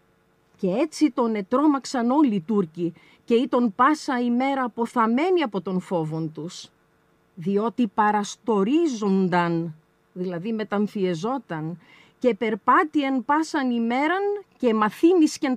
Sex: female